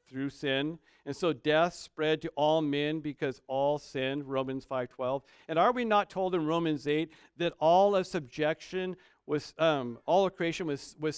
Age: 50-69